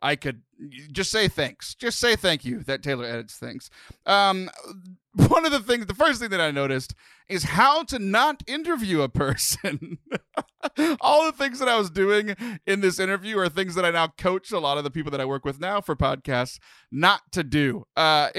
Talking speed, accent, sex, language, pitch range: 205 wpm, American, male, English, 145-230 Hz